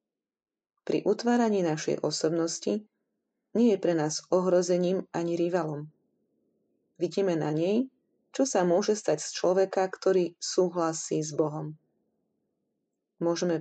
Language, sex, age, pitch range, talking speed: Slovak, female, 30-49, 160-195 Hz, 110 wpm